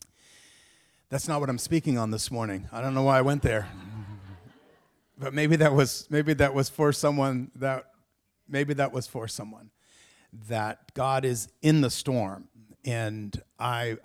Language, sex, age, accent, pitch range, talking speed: English, male, 50-69, American, 110-135 Hz, 160 wpm